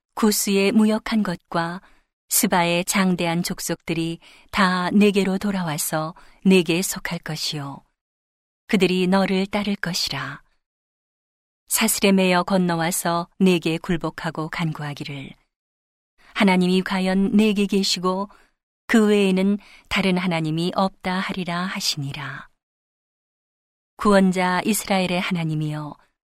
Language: Korean